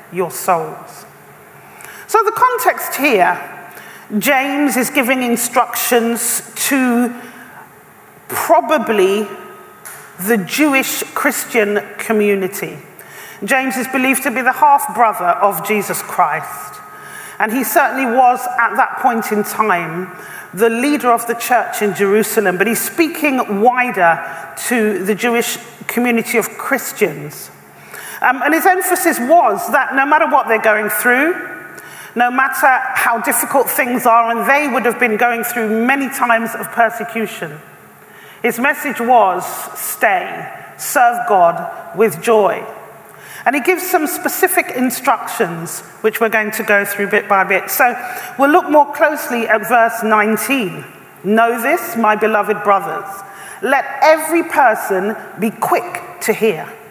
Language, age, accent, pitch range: English, 40-59, British, 210-275 Hz